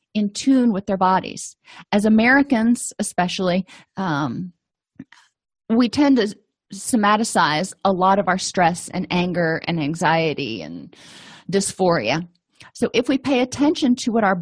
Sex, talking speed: female, 135 wpm